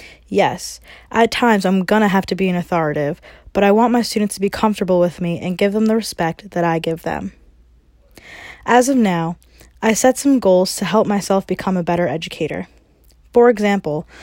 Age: 20-39